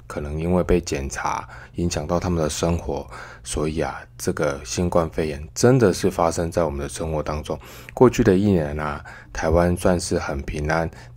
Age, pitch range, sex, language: 20-39, 75-95 Hz, male, Chinese